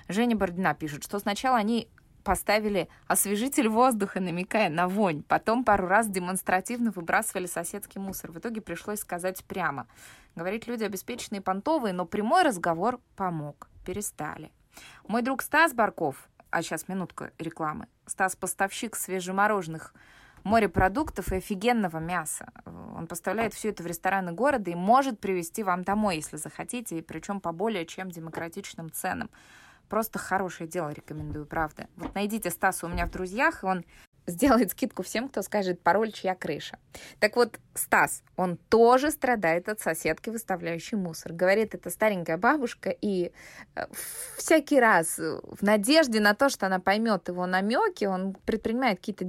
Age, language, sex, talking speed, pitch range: 20-39, Russian, female, 145 wpm, 175-225 Hz